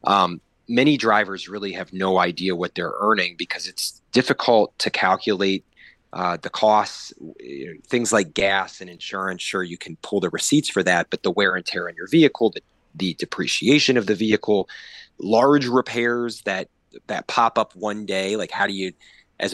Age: 30-49